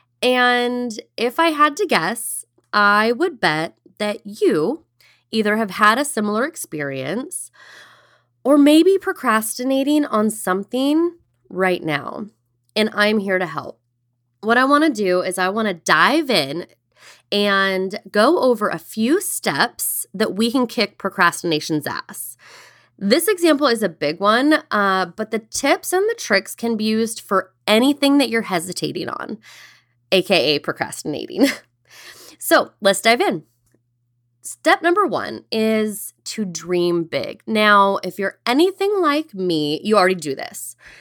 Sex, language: female, English